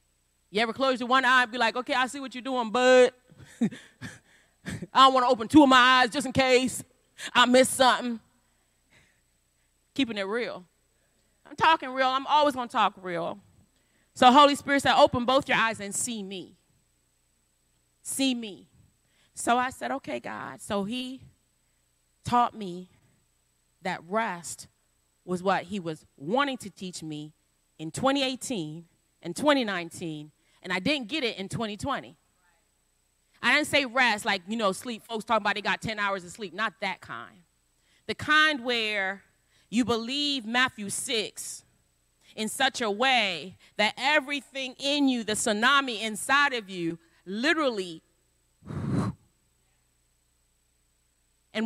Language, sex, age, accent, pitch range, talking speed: English, female, 30-49, American, 160-260 Hz, 150 wpm